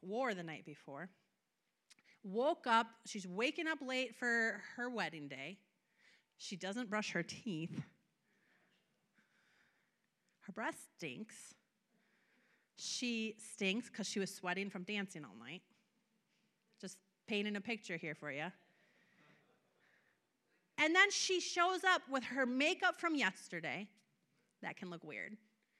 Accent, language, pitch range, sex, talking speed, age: American, English, 205-285 Hz, female, 125 wpm, 30-49